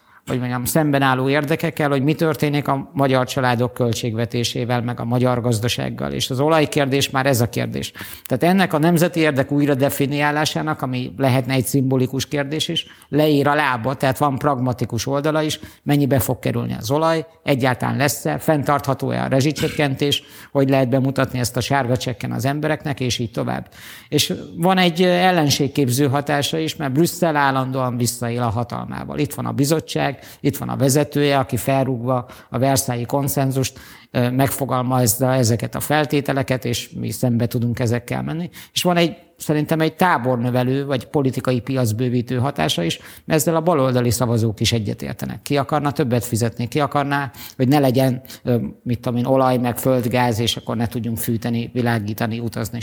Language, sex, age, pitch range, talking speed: Hungarian, male, 50-69, 120-145 Hz, 160 wpm